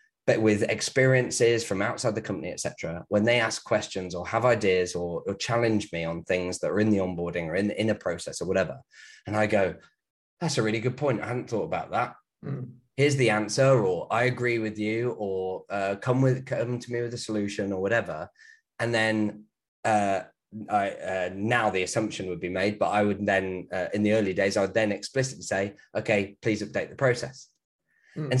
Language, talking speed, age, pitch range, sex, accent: English, 210 wpm, 20-39, 100-125 Hz, male, British